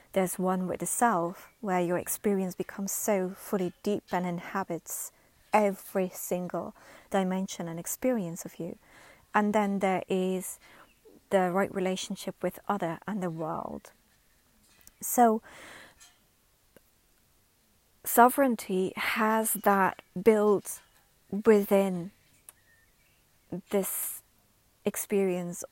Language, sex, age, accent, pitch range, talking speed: English, female, 30-49, British, 185-205 Hz, 95 wpm